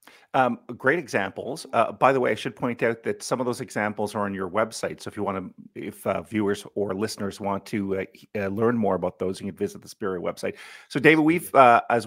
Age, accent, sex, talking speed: 40-59, American, male, 245 wpm